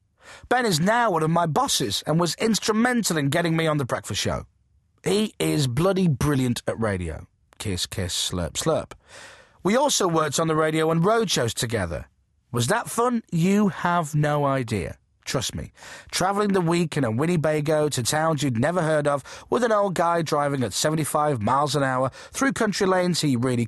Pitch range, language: 125-180 Hz, English